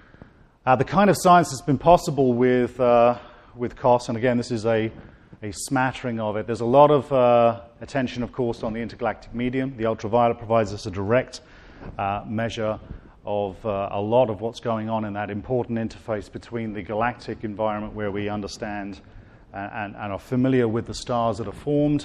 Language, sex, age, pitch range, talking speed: English, male, 40-59, 105-125 Hz, 190 wpm